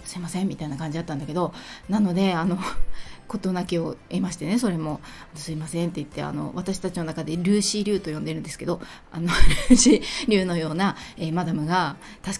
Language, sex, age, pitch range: Japanese, female, 20-39, 165-200 Hz